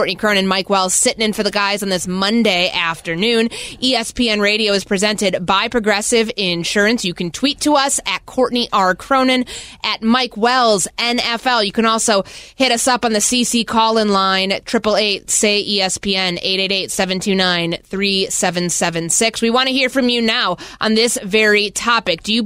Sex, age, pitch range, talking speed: female, 20-39, 180-235 Hz, 160 wpm